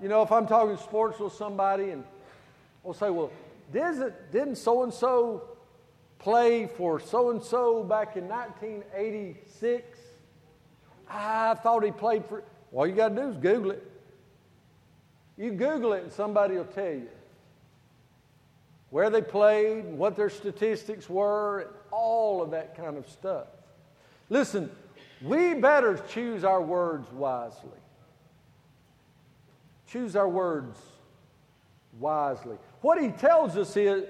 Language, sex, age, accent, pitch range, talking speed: English, male, 50-69, American, 180-240 Hz, 130 wpm